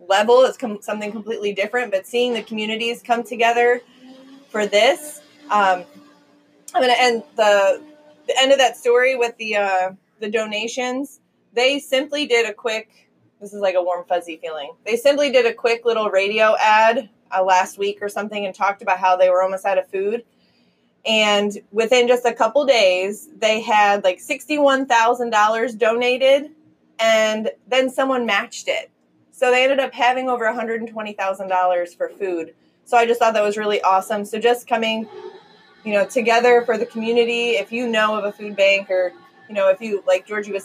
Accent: American